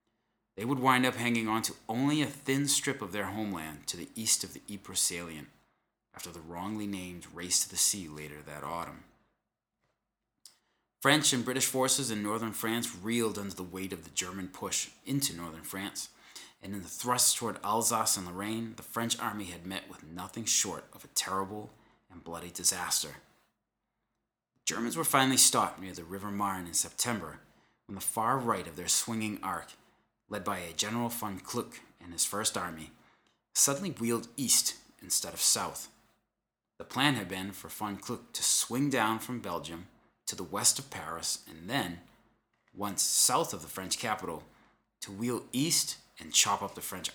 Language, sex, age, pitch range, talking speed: English, male, 30-49, 90-120 Hz, 175 wpm